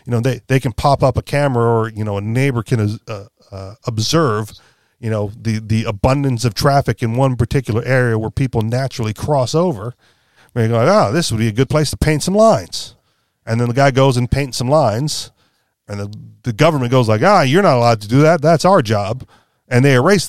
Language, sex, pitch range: English, male, 110-135 Hz